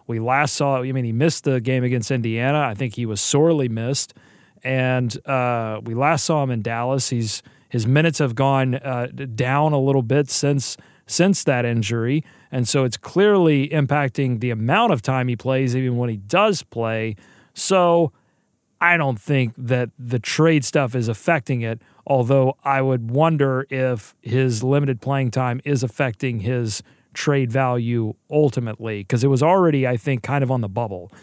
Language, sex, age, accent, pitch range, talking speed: English, male, 30-49, American, 120-145 Hz, 175 wpm